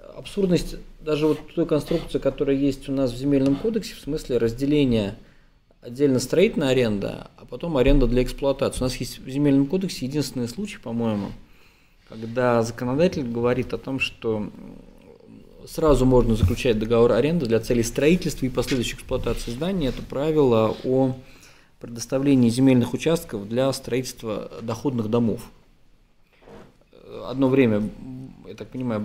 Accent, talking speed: native, 135 wpm